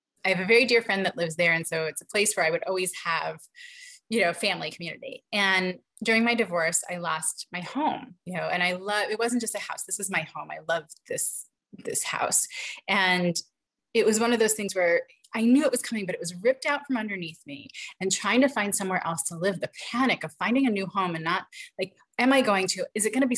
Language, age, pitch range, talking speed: English, 30-49, 170-225 Hz, 250 wpm